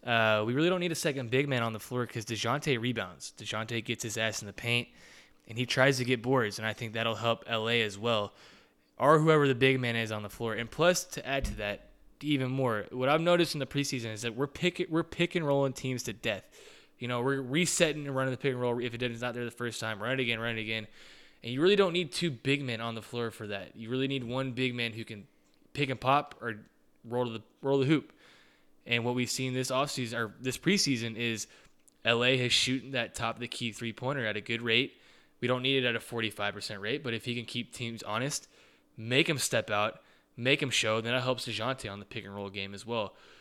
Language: English